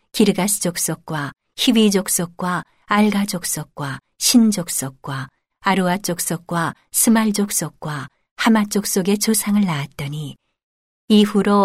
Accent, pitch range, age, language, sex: native, 160-210 Hz, 40-59, Korean, female